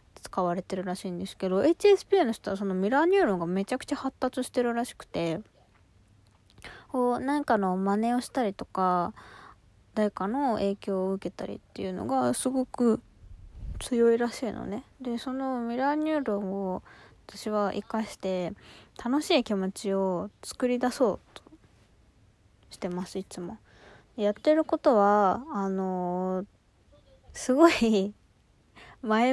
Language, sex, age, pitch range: Japanese, female, 20-39, 185-270 Hz